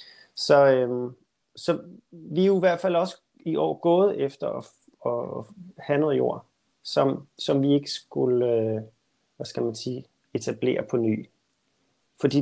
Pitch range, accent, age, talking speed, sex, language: 120-160 Hz, native, 30-49, 155 wpm, male, Danish